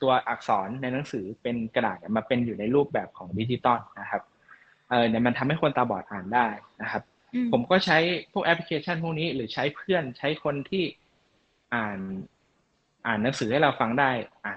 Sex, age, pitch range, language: male, 20-39, 115-165 Hz, Thai